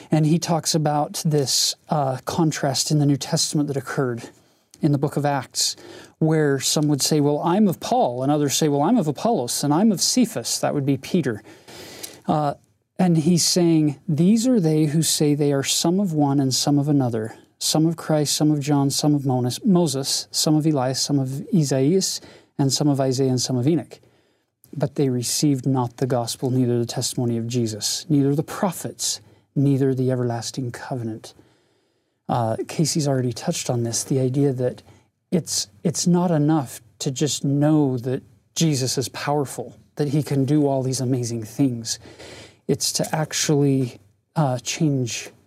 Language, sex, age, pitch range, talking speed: English, male, 40-59, 130-155 Hz, 175 wpm